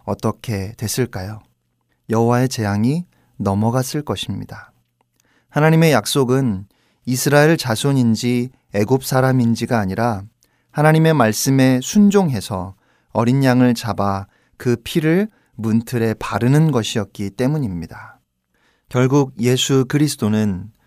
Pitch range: 105-145 Hz